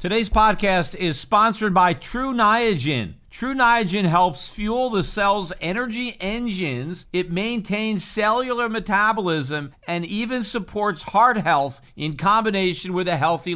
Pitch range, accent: 145-200 Hz, American